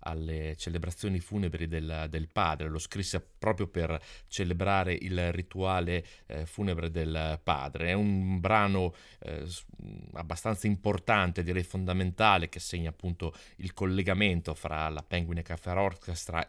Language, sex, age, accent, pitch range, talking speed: Italian, male, 30-49, native, 80-100 Hz, 125 wpm